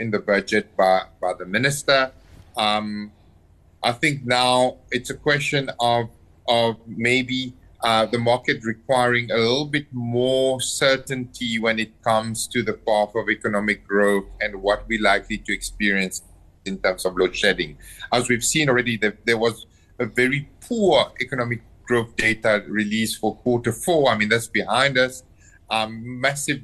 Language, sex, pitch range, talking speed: English, male, 110-130 Hz, 160 wpm